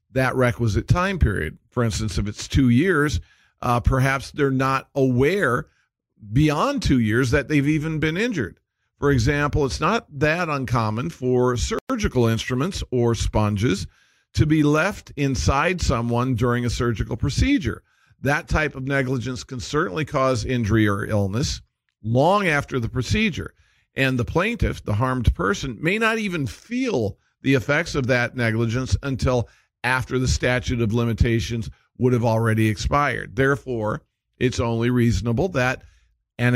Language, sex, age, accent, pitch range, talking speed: English, male, 50-69, American, 115-135 Hz, 145 wpm